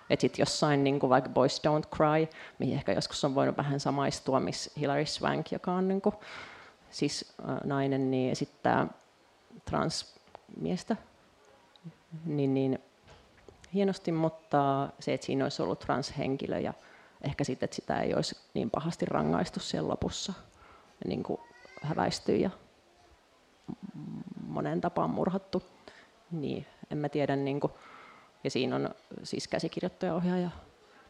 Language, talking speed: Finnish, 125 wpm